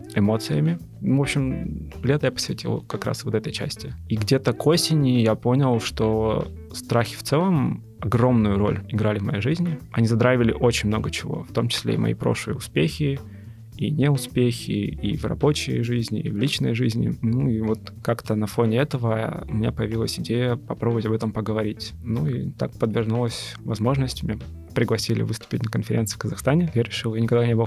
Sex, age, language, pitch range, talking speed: male, 20-39, Russian, 110-130 Hz, 180 wpm